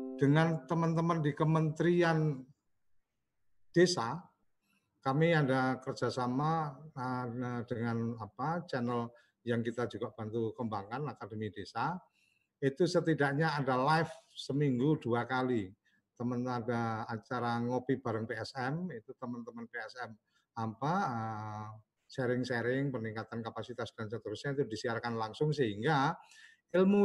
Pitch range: 115-150 Hz